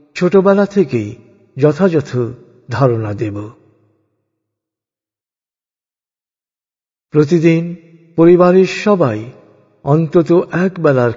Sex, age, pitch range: male, 50-69, 110-175 Hz